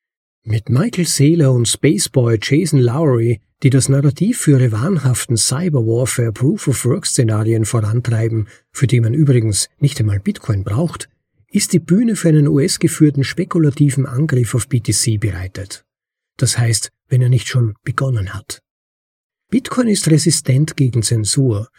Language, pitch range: German, 115-155 Hz